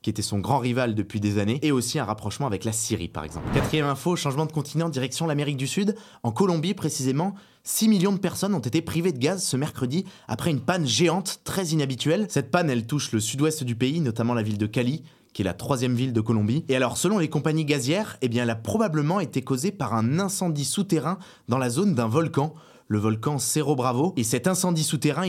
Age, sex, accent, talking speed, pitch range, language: 20-39, male, French, 225 wpm, 120-160 Hz, French